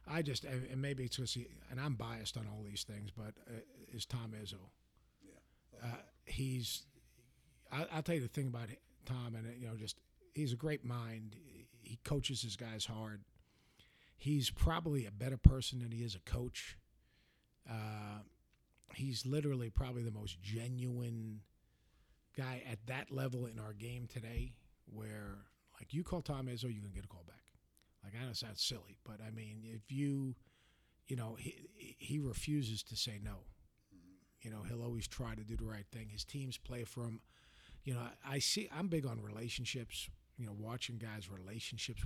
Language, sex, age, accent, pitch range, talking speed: English, male, 50-69, American, 105-125 Hz, 185 wpm